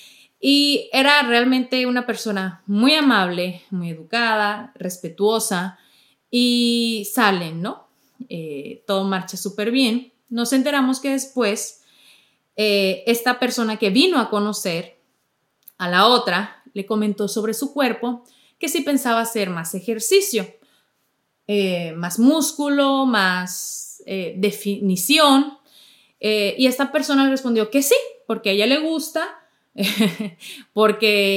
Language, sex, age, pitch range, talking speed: Spanish, female, 30-49, 190-245 Hz, 120 wpm